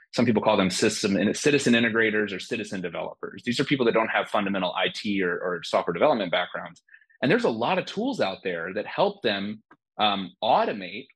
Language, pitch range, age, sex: English, 100-135 Hz, 30-49, male